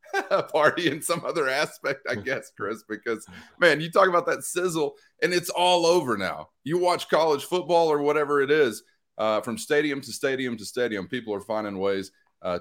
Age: 30-49